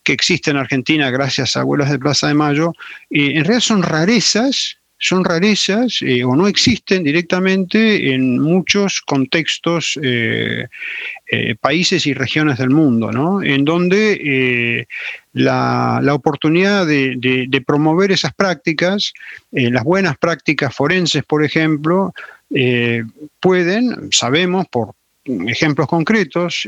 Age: 40-59